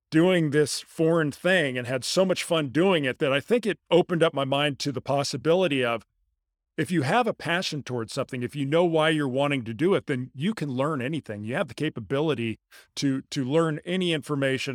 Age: 40-59